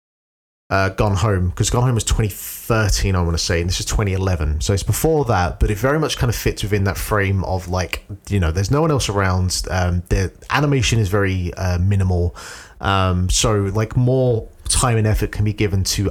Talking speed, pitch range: 210 wpm, 90-120 Hz